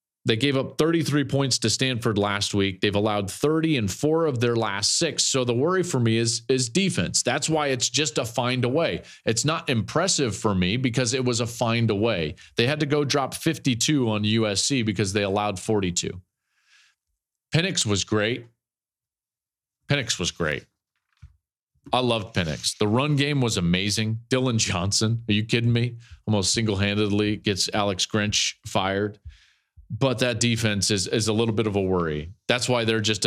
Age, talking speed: 40-59, 180 wpm